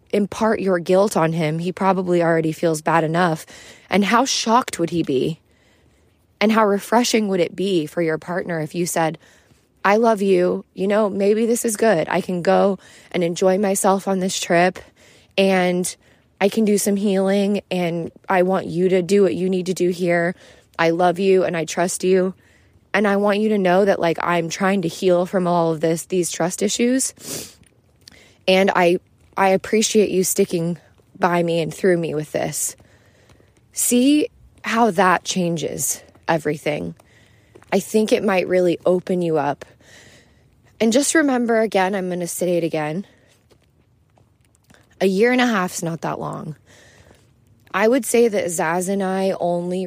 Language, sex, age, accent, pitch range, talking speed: English, female, 20-39, American, 165-195 Hz, 175 wpm